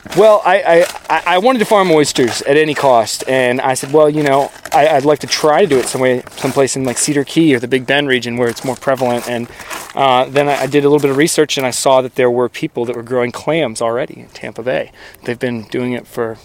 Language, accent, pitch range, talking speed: English, American, 120-140 Hz, 255 wpm